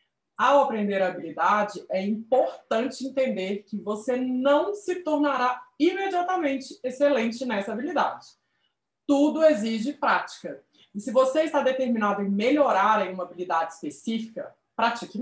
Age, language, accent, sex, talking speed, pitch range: 20-39, Portuguese, Brazilian, female, 120 wpm, 210-290 Hz